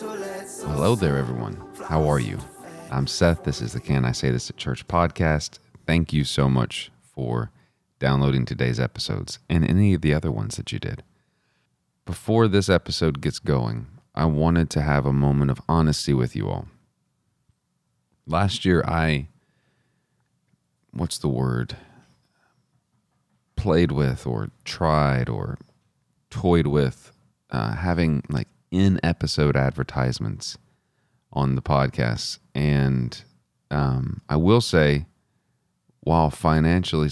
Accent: American